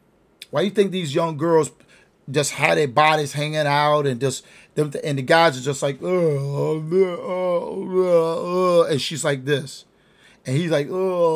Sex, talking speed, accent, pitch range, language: male, 180 wpm, American, 140-180 Hz, English